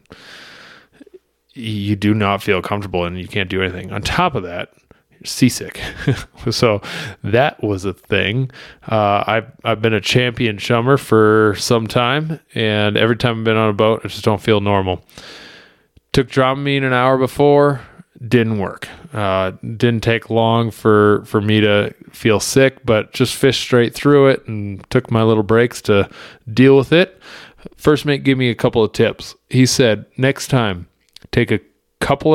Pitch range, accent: 105-125 Hz, American